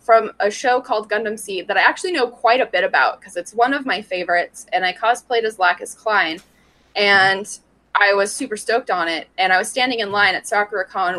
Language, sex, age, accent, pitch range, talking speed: English, female, 20-39, American, 205-320 Hz, 225 wpm